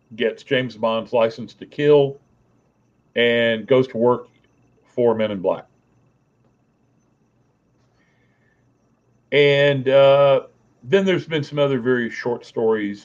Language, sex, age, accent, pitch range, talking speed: English, male, 50-69, American, 115-140 Hz, 110 wpm